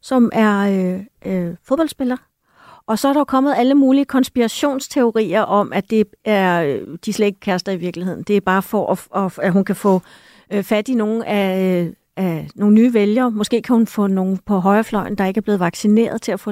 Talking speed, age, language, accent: 220 wpm, 40-59, Danish, native